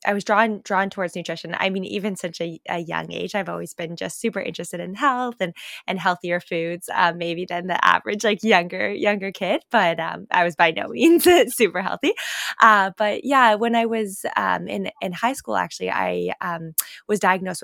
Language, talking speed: English, 205 wpm